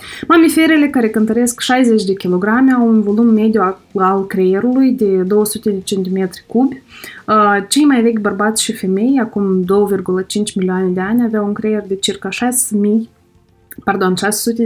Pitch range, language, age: 200-260 Hz, Romanian, 20-39